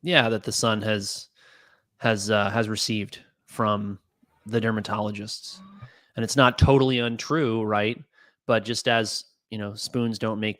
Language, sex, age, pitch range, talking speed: English, male, 30-49, 105-115 Hz, 145 wpm